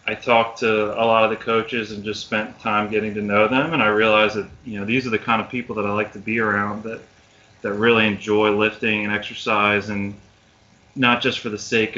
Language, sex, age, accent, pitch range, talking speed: English, male, 30-49, American, 105-115 Hz, 235 wpm